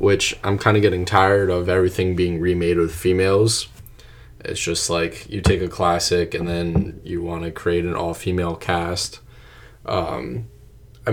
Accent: American